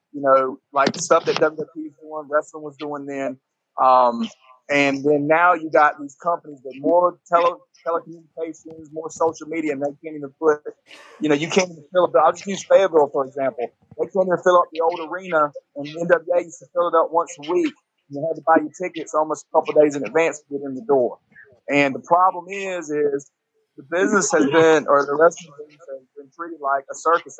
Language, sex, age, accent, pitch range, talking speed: English, male, 30-49, American, 145-170 Hz, 220 wpm